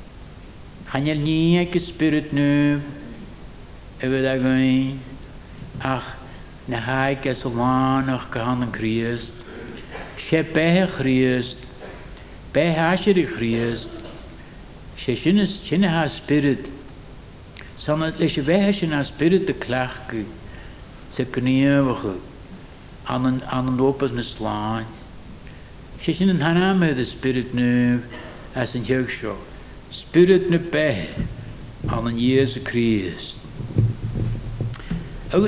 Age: 60-79